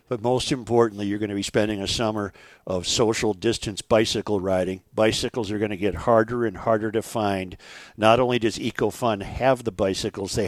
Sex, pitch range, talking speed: male, 105-130 Hz, 190 wpm